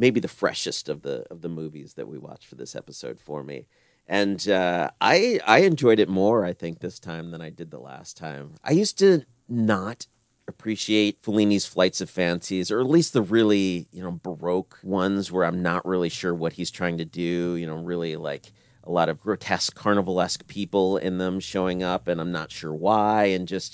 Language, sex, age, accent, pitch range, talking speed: English, male, 40-59, American, 90-115 Hz, 205 wpm